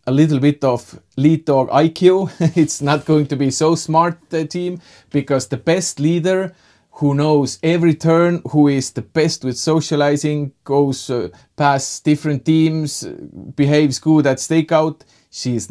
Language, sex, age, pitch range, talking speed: English, male, 30-49, 115-150 Hz, 155 wpm